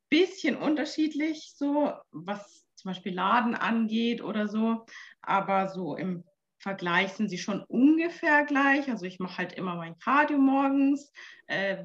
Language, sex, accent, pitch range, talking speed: German, female, German, 195-260 Hz, 140 wpm